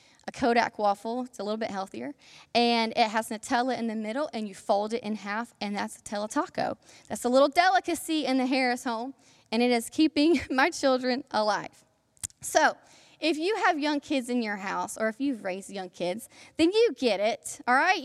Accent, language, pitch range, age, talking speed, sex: American, English, 230-305 Hz, 10-29, 200 wpm, female